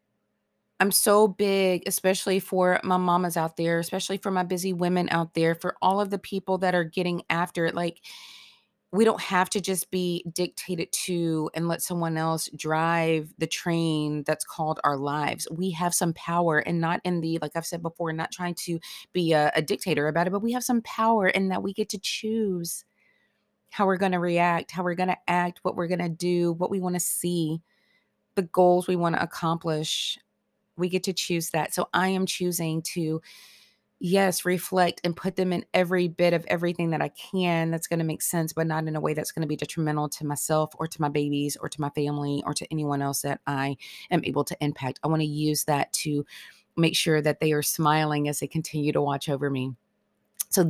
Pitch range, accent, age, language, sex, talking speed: 155-180 Hz, American, 30-49, English, female, 215 wpm